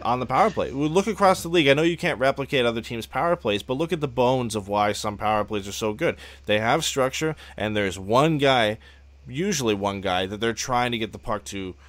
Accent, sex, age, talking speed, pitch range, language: American, male, 20-39, 240 wpm, 95-120 Hz, English